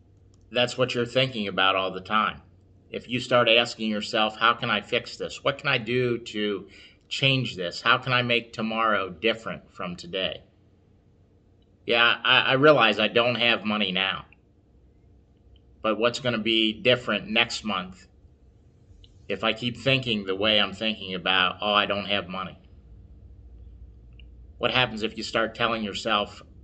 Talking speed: 160 wpm